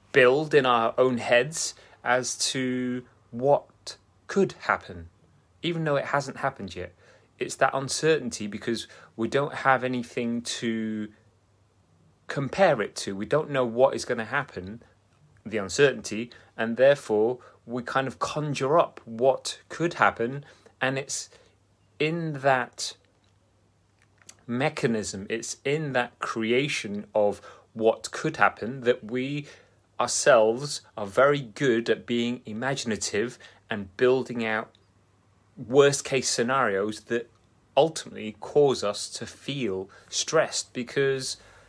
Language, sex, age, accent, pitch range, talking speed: English, male, 30-49, British, 105-130 Hz, 120 wpm